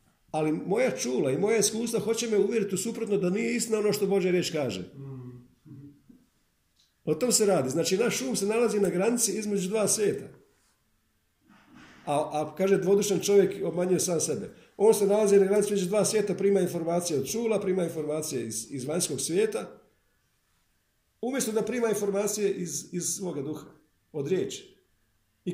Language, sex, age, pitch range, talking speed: Croatian, male, 50-69, 135-200 Hz, 165 wpm